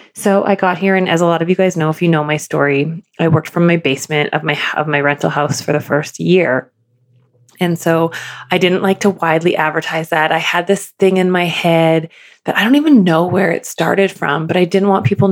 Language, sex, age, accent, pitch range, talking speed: English, female, 20-39, American, 160-195 Hz, 240 wpm